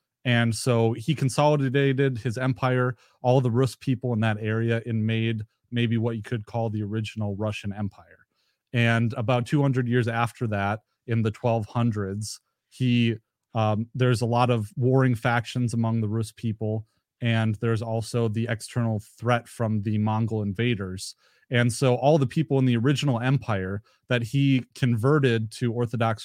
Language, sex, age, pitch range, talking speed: English, male, 30-49, 110-130 Hz, 155 wpm